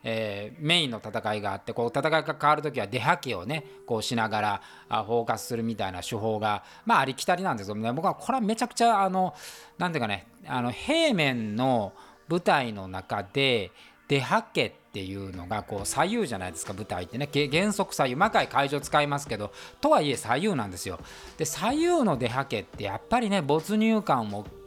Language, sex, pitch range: Japanese, male, 110-175 Hz